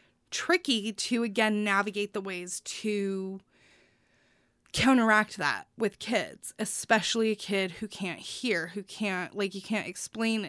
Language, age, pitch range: English, 20-39, 185-230 Hz